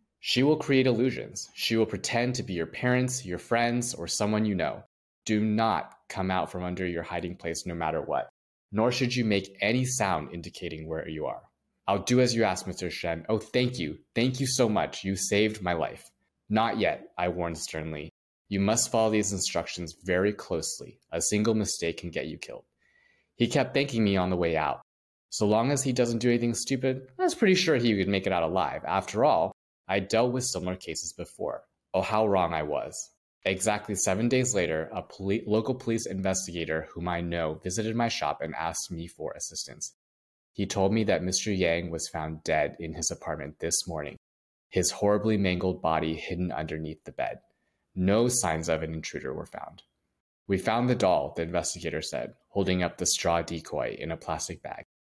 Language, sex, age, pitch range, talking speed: English, male, 20-39, 85-115 Hz, 195 wpm